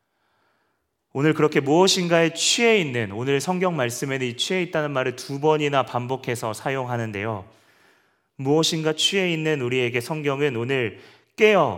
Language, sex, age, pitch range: Korean, male, 30-49, 110-150 Hz